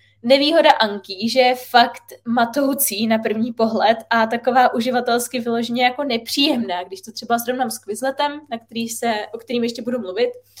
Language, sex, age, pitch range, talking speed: Czech, female, 20-39, 230-265 Hz, 165 wpm